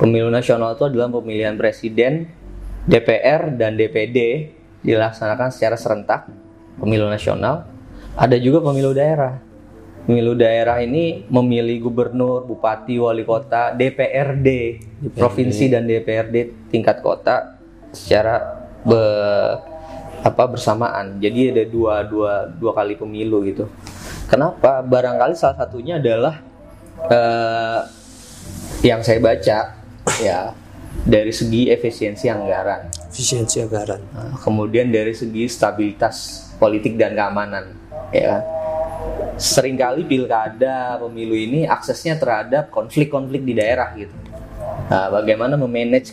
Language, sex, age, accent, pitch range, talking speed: Indonesian, male, 20-39, native, 110-130 Hz, 105 wpm